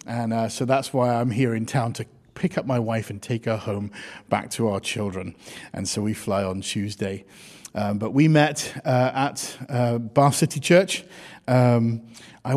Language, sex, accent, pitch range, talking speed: English, male, British, 125-155 Hz, 190 wpm